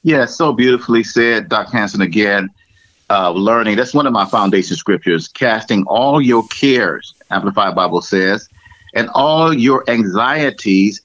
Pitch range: 100-130 Hz